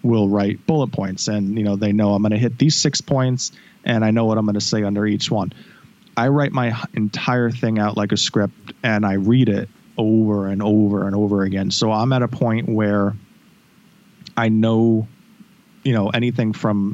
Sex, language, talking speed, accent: male, English, 205 wpm, American